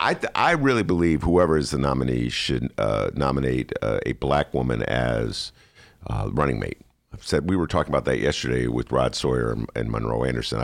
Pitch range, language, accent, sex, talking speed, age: 70-120 Hz, English, American, male, 195 wpm, 50-69